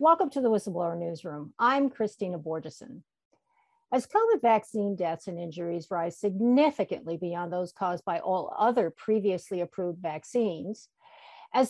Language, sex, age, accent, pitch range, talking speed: English, female, 50-69, American, 180-270 Hz, 135 wpm